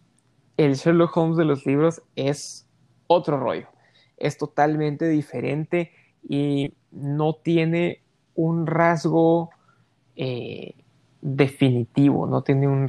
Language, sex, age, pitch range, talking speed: Spanish, male, 20-39, 135-165 Hz, 100 wpm